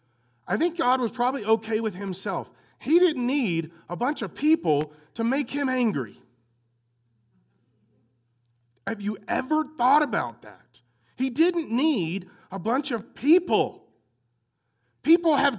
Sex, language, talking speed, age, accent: male, English, 130 wpm, 40-59, American